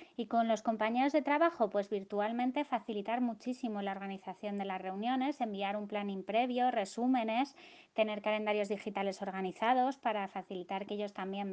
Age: 20-39